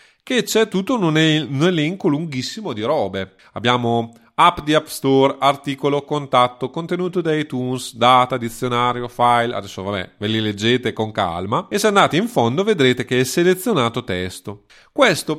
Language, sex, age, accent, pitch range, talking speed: Italian, male, 30-49, native, 105-155 Hz, 150 wpm